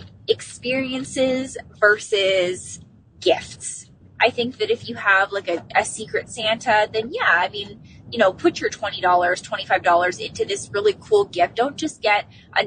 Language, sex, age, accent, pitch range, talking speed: English, female, 20-39, American, 195-275 Hz, 155 wpm